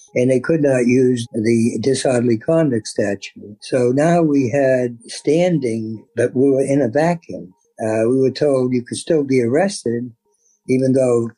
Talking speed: 165 wpm